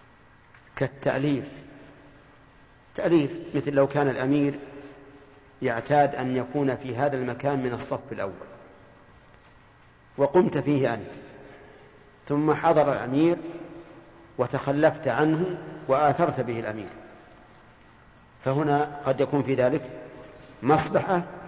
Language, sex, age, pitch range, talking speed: Arabic, male, 50-69, 130-145 Hz, 90 wpm